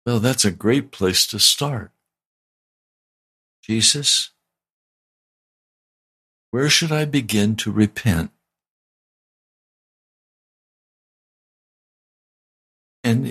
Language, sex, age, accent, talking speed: English, male, 60-79, American, 70 wpm